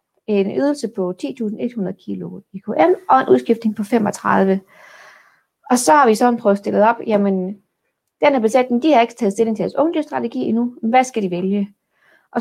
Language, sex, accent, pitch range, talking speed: Danish, female, native, 195-245 Hz, 180 wpm